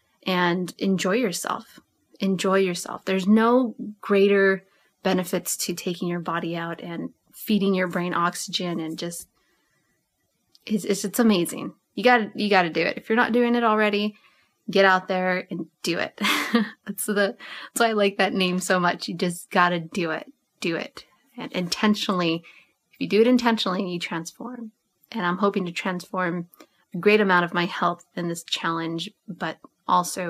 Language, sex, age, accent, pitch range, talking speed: English, female, 20-39, American, 175-210 Hz, 170 wpm